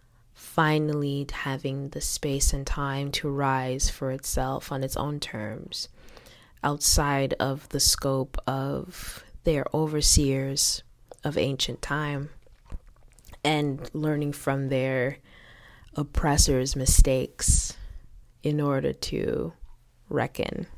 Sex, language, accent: female, English, American